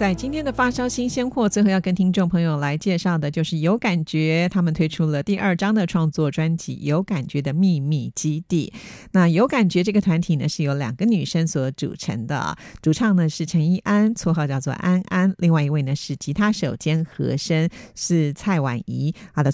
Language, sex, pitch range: Chinese, female, 145-185 Hz